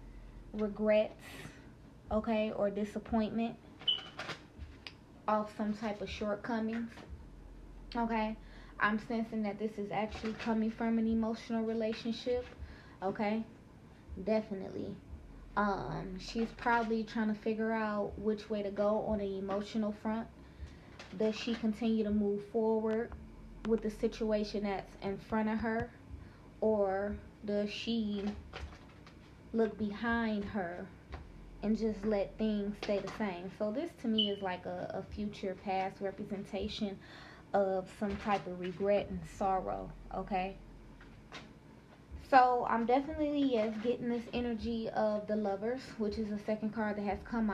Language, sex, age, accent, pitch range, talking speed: English, female, 20-39, American, 195-220 Hz, 130 wpm